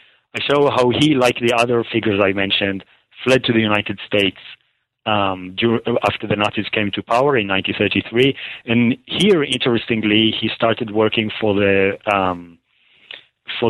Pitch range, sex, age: 100-120 Hz, male, 30-49